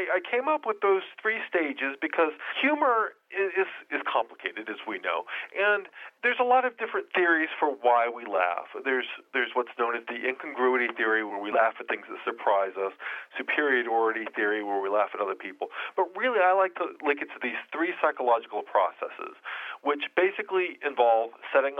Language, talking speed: English, 185 wpm